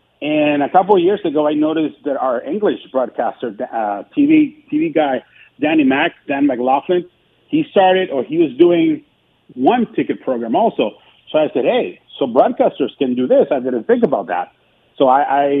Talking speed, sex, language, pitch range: 180 wpm, male, English, 135-195 Hz